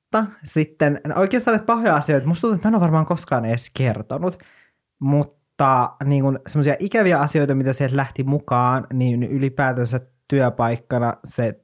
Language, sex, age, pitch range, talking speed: Finnish, male, 20-39, 120-145 Hz, 140 wpm